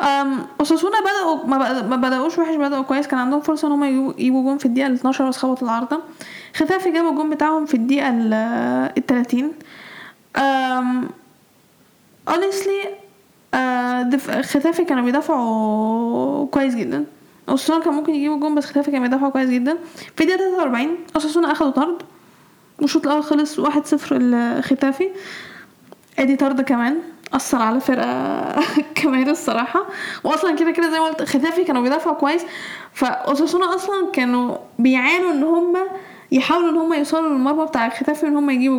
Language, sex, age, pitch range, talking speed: Arabic, female, 10-29, 265-320 Hz, 135 wpm